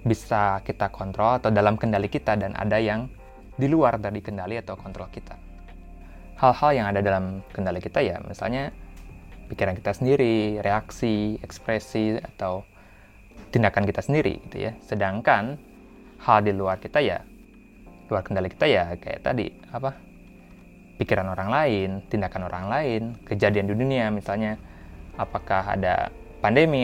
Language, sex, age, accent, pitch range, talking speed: Indonesian, male, 20-39, native, 95-115 Hz, 140 wpm